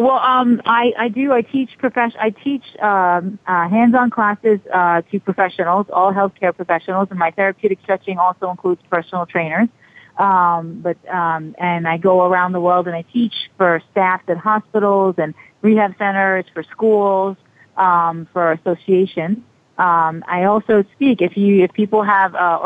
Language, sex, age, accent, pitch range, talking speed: English, female, 30-49, American, 170-195 Hz, 165 wpm